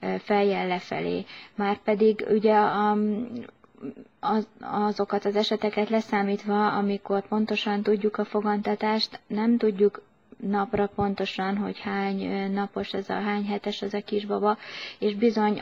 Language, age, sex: Hungarian, 20-39, female